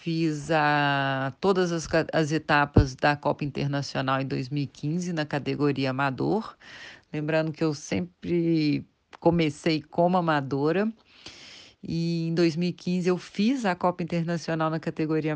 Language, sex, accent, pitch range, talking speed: Portuguese, female, Brazilian, 145-170 Hz, 115 wpm